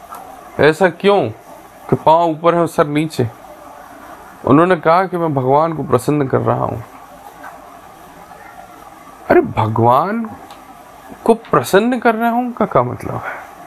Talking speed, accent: 125 wpm, native